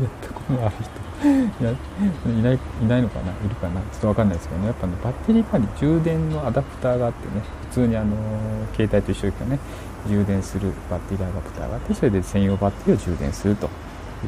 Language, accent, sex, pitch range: Japanese, native, male, 90-120 Hz